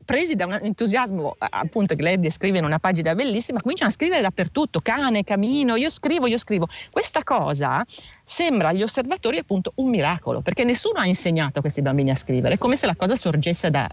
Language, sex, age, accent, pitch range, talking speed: Italian, female, 40-59, native, 155-225 Hz, 200 wpm